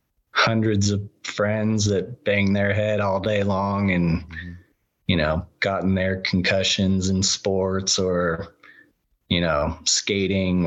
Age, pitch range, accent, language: 20-39, 95-115 Hz, American, English